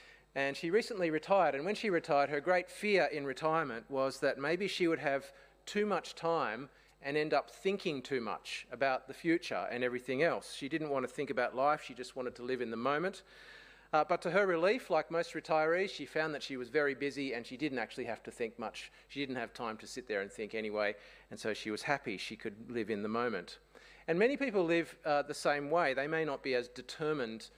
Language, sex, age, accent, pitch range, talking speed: English, male, 40-59, Australian, 135-175 Hz, 235 wpm